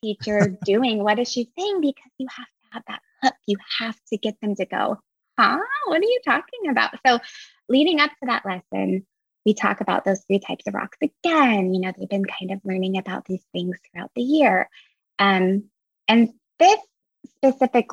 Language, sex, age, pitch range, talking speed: English, female, 20-39, 195-255 Hz, 195 wpm